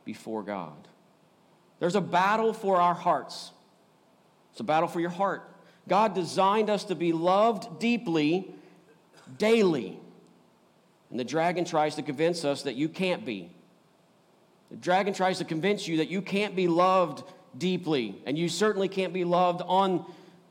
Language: English